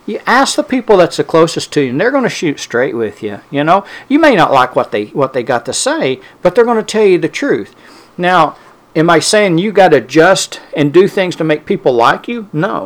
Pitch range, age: 125-170 Hz, 50-69